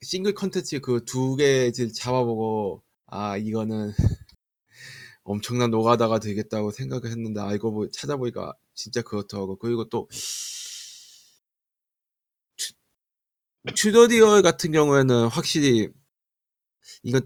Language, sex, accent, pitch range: Korean, male, native, 110-145 Hz